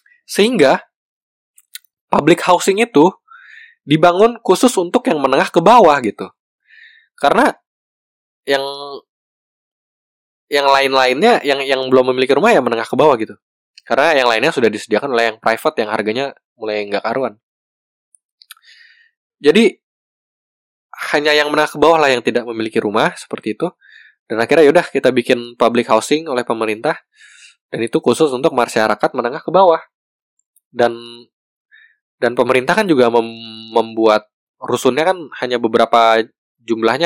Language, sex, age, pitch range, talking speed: Indonesian, male, 20-39, 115-165 Hz, 135 wpm